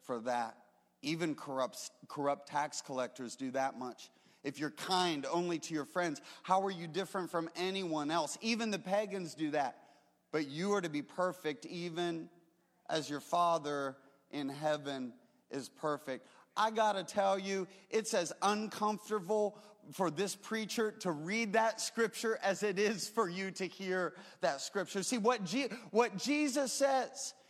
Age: 30-49